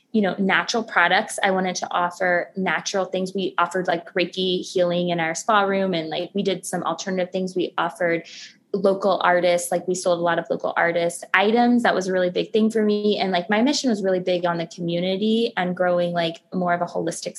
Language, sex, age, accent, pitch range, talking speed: English, female, 20-39, American, 180-205 Hz, 220 wpm